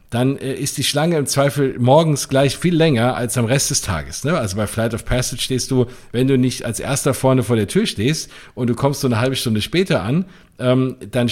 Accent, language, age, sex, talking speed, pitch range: German, German, 50-69, male, 225 wpm, 115-145 Hz